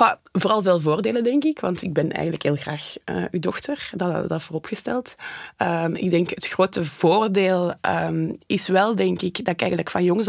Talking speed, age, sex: 200 wpm, 20-39, female